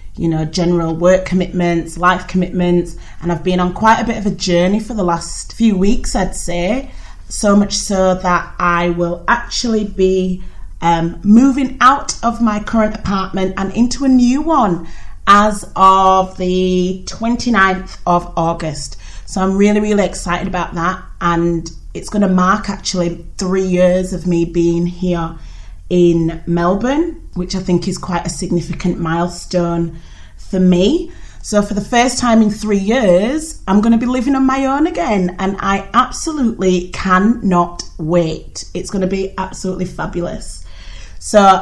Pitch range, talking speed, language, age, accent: 175-210 Hz, 160 wpm, English, 30-49, British